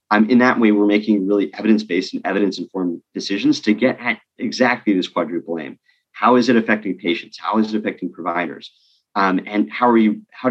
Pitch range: 95-125 Hz